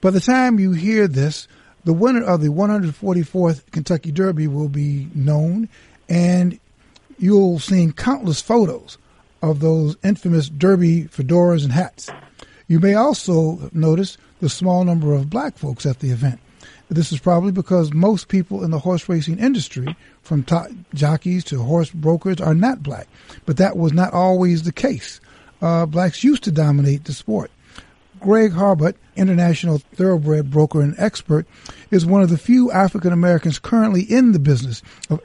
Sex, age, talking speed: male, 50-69, 160 wpm